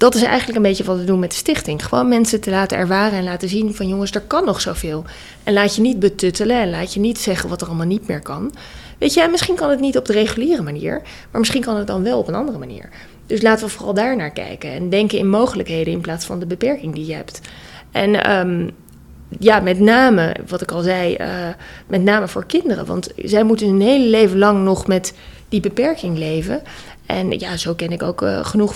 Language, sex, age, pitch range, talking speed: Dutch, female, 20-39, 185-225 Hz, 235 wpm